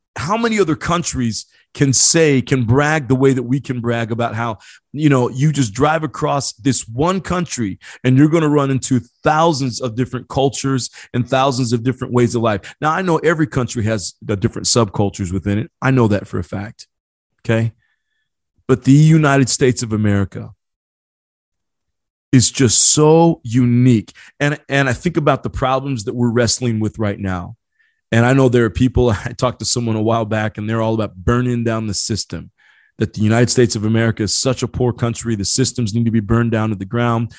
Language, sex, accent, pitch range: English, male, American, 110-135 Hz